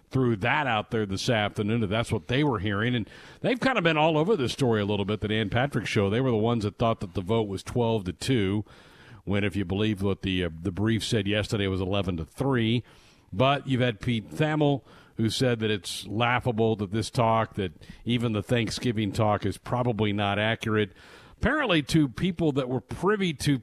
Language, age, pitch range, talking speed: English, 50-69, 105-135 Hz, 215 wpm